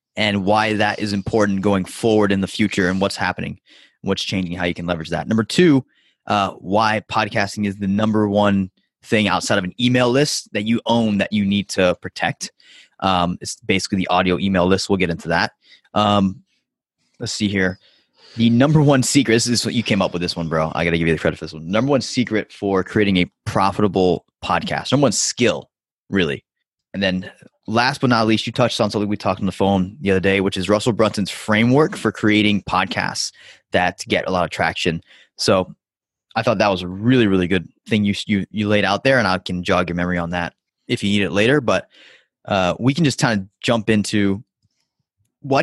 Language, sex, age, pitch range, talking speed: English, male, 20-39, 95-115 Hz, 215 wpm